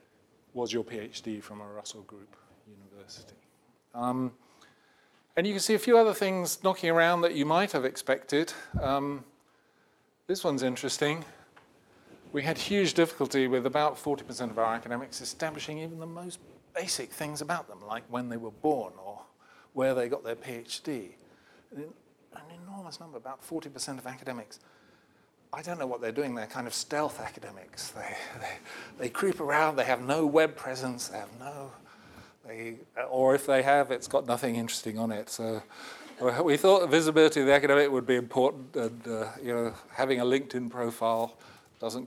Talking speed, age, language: 170 wpm, 40-59, English